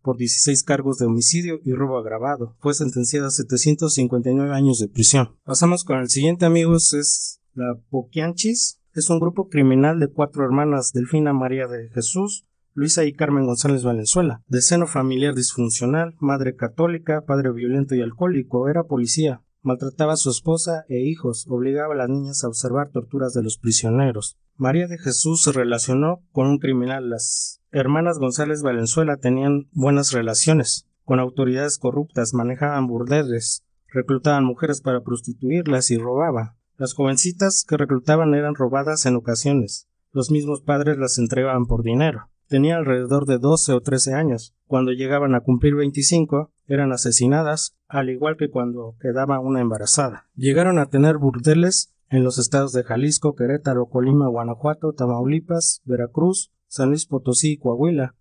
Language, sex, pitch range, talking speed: Spanish, male, 125-150 Hz, 155 wpm